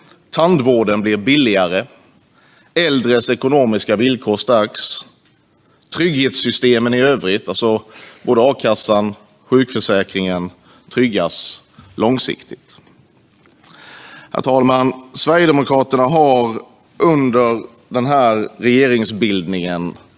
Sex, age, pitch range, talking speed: male, 30-49, 100-135 Hz, 70 wpm